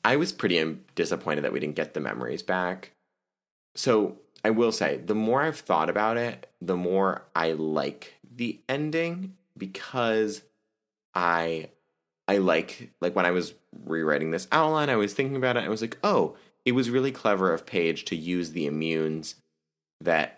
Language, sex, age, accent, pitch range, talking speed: English, male, 20-39, American, 85-120 Hz, 170 wpm